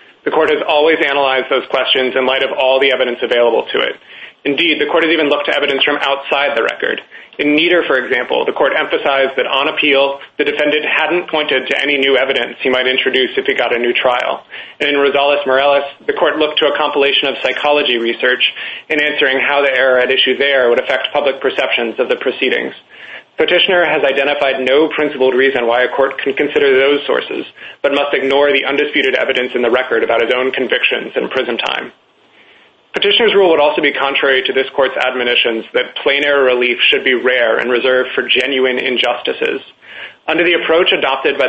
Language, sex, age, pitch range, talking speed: English, male, 30-49, 135-160 Hz, 200 wpm